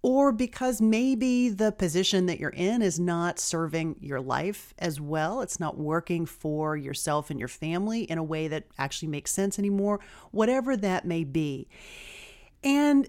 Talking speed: 165 wpm